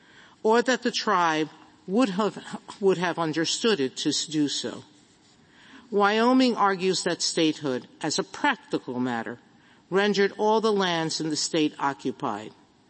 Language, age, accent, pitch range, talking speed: English, 50-69, American, 150-200 Hz, 135 wpm